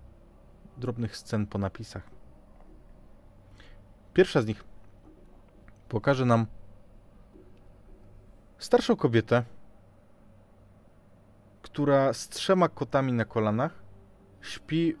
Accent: native